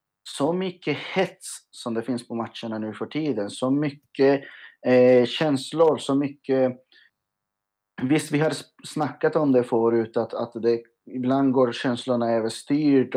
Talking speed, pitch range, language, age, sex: 140 wpm, 115-145 Hz, Swedish, 30-49, male